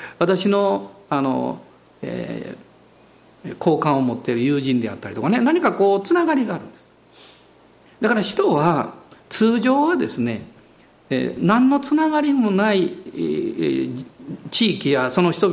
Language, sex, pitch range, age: Japanese, male, 165-250 Hz, 50-69